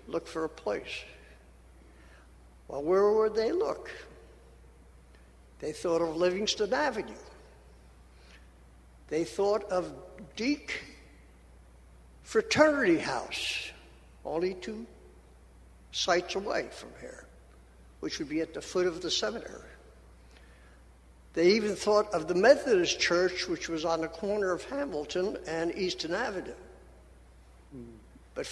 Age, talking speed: 60-79, 110 wpm